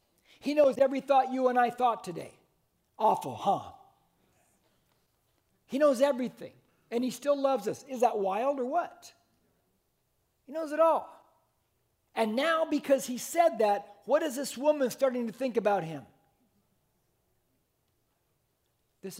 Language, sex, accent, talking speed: English, male, American, 140 wpm